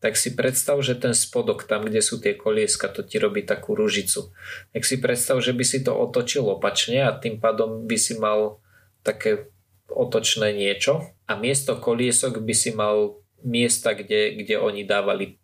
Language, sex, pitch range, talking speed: Slovak, male, 100-130 Hz, 175 wpm